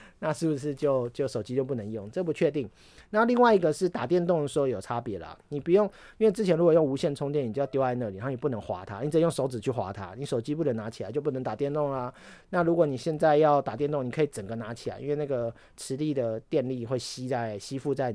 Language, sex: Chinese, male